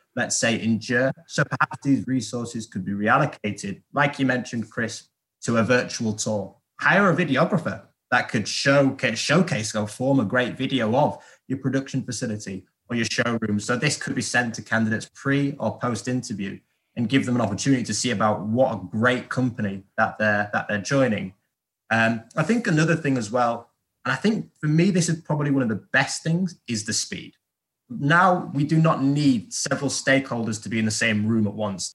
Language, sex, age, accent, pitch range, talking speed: English, male, 20-39, British, 105-135 Hz, 190 wpm